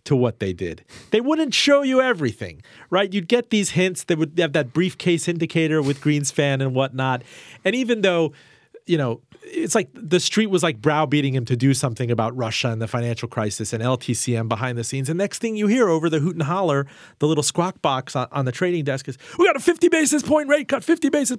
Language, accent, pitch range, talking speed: English, American, 125-180 Hz, 225 wpm